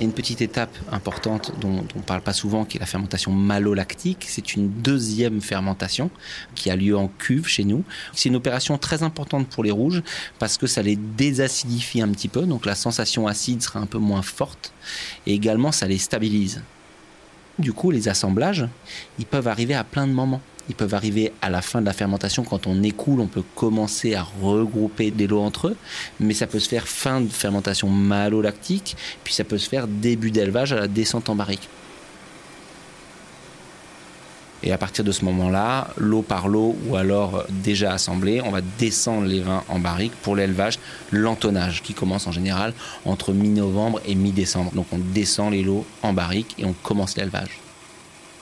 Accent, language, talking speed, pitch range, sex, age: French, French, 190 wpm, 100-120 Hz, male, 30-49